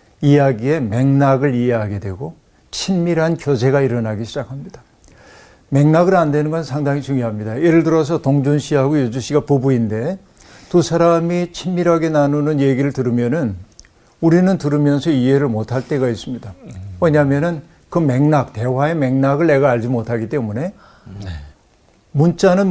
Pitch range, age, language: 115-150 Hz, 50-69, Korean